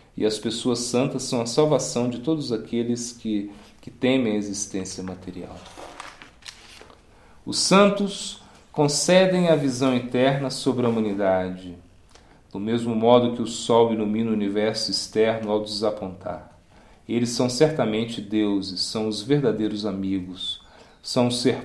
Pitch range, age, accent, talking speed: 105-125 Hz, 40-59, Brazilian, 135 wpm